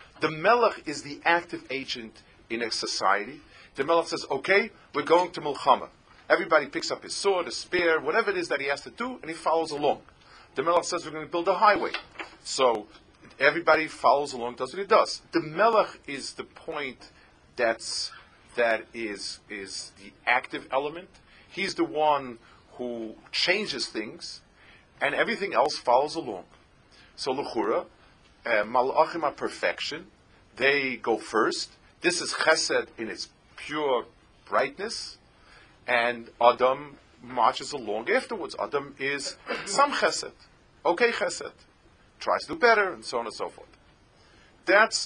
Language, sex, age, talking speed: English, male, 40-59, 150 wpm